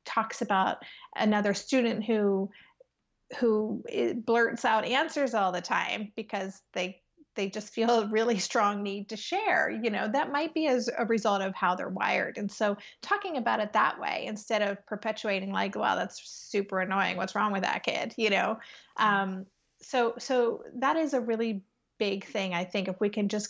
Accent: American